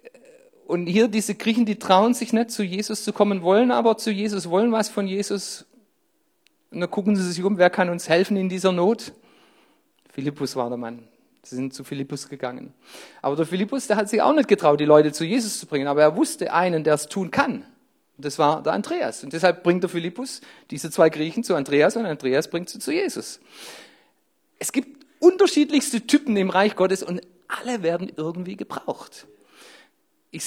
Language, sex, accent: German, male, German